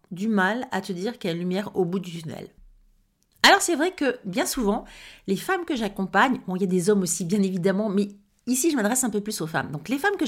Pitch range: 185-240 Hz